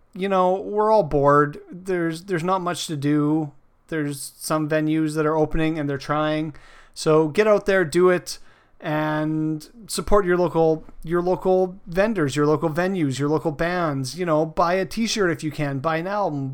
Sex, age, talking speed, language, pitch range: male, 30-49, 180 wpm, English, 150-185 Hz